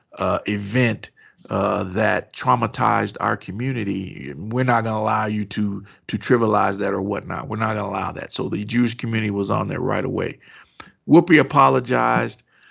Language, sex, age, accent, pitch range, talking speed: English, male, 50-69, American, 105-140 Hz, 170 wpm